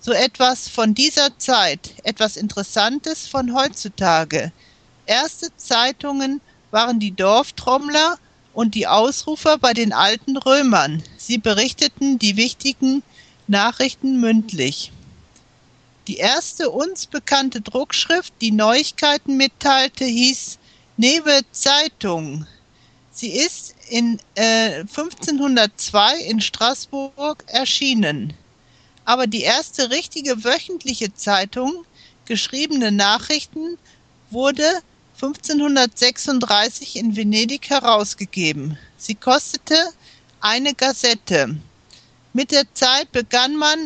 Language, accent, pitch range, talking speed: German, German, 220-280 Hz, 95 wpm